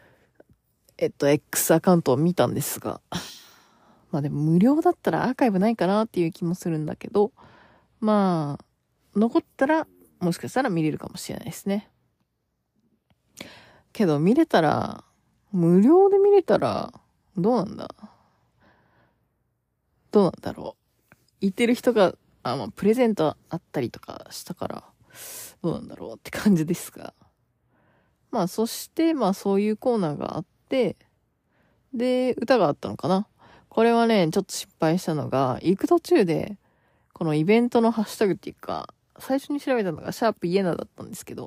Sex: female